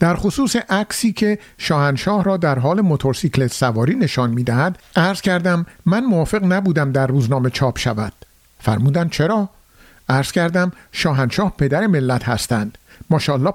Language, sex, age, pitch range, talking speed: Persian, male, 50-69, 130-185 Hz, 135 wpm